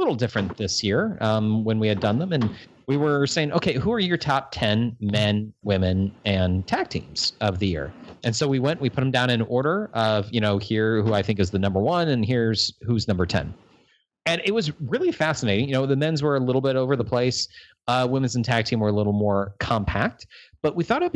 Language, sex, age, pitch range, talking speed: English, male, 30-49, 100-135 Hz, 240 wpm